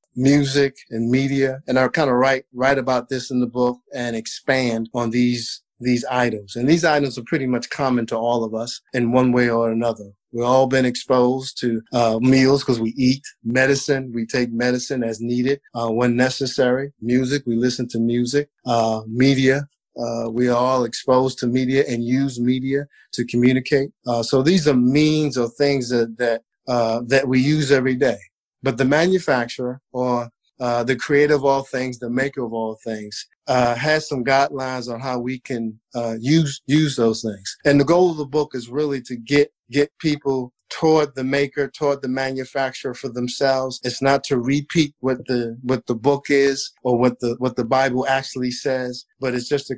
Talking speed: 190 wpm